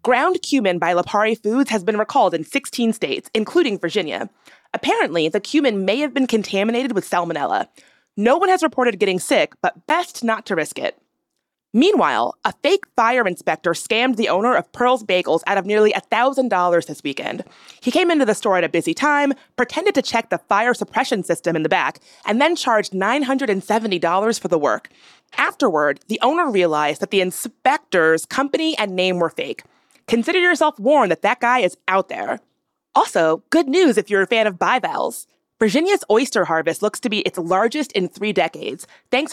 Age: 30-49